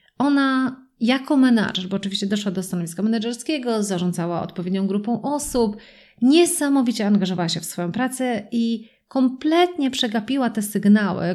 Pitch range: 195-235 Hz